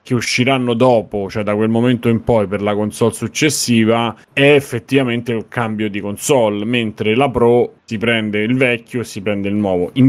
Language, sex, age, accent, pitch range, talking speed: Italian, male, 30-49, native, 100-125 Hz, 190 wpm